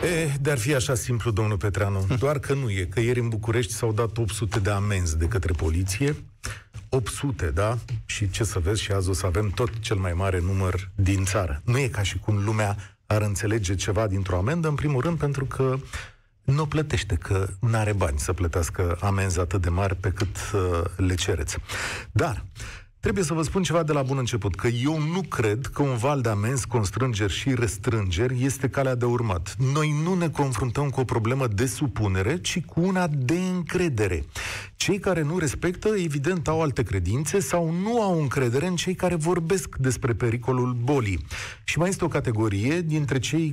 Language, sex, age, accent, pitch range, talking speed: Romanian, male, 40-59, native, 100-150 Hz, 195 wpm